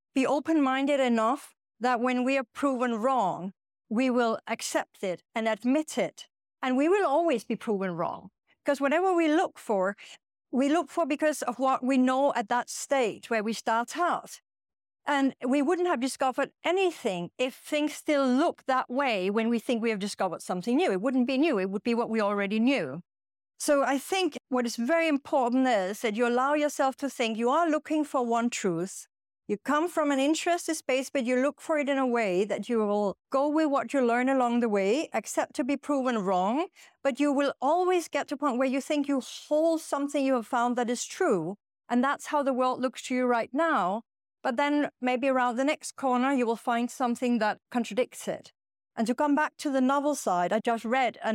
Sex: female